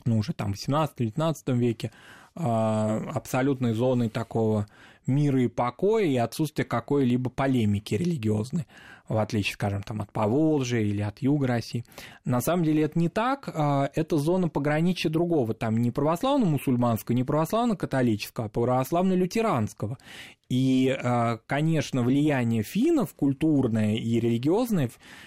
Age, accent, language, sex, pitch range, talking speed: 20-39, native, Russian, male, 115-155 Hz, 120 wpm